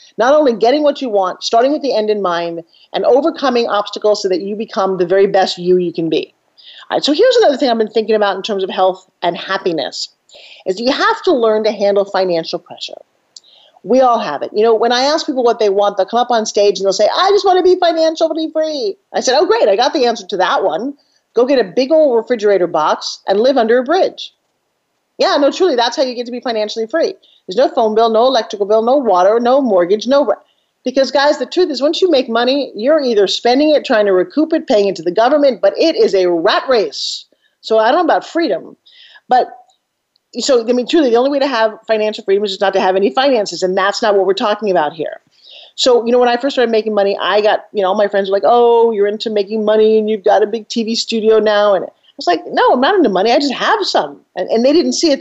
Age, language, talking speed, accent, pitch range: 40-59, English, 255 wpm, American, 200-285 Hz